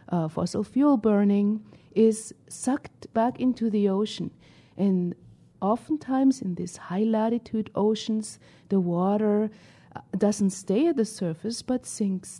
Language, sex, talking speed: English, female, 120 wpm